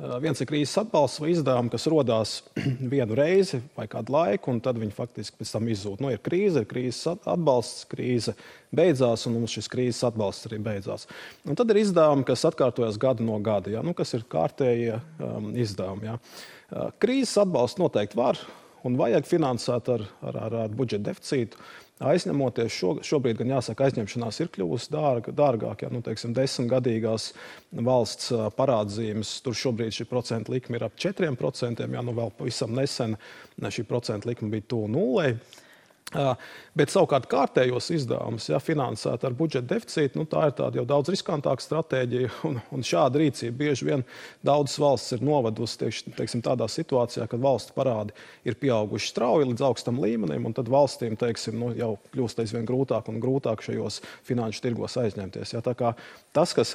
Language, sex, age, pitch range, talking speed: English, male, 30-49, 115-135 Hz, 160 wpm